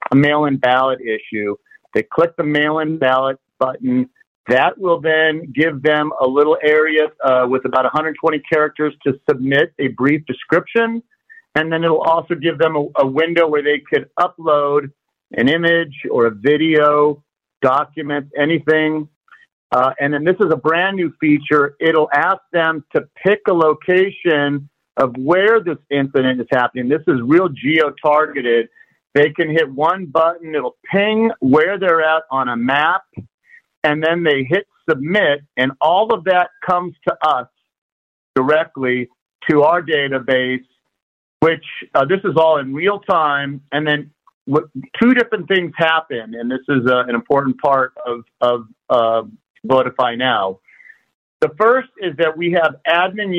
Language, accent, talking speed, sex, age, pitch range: English, American, 155 wpm, male, 50-69, 135-170 Hz